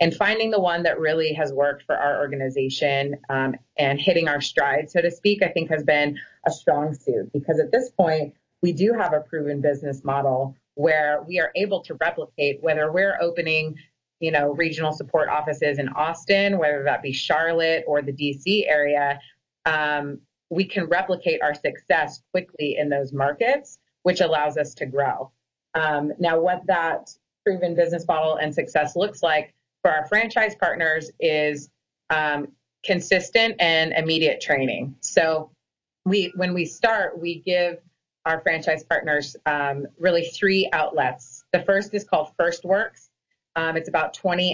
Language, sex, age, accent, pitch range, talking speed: English, female, 30-49, American, 145-175 Hz, 165 wpm